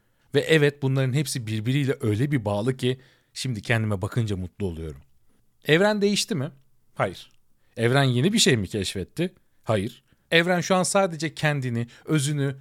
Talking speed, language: 150 wpm, Turkish